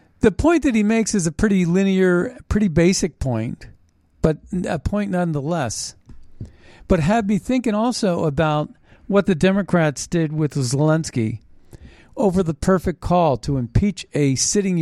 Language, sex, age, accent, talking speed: English, male, 50-69, American, 145 wpm